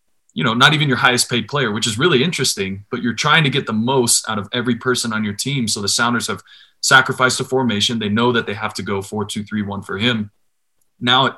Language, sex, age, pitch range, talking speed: English, male, 20-39, 105-130 Hz, 225 wpm